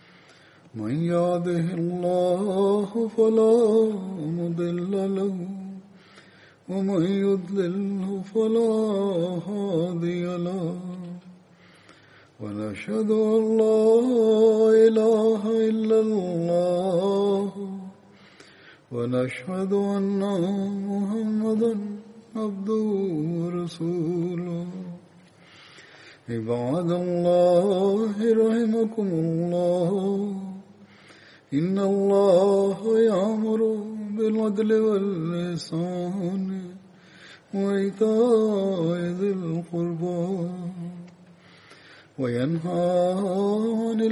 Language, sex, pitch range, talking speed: Bulgarian, male, 175-210 Hz, 40 wpm